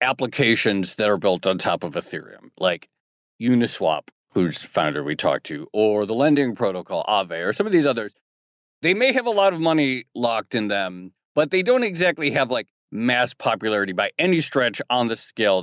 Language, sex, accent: English, male, American